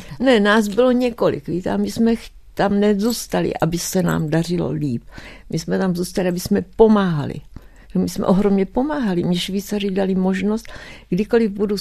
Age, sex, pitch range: 60-79, female, 175-220 Hz